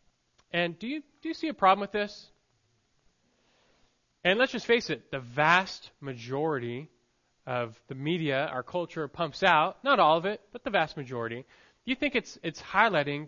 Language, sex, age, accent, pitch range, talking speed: English, male, 20-39, American, 130-195 Hz, 175 wpm